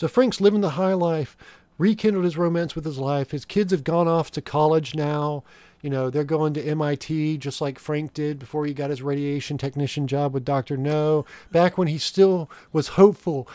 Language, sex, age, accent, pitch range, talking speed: English, male, 40-59, American, 130-170 Hz, 205 wpm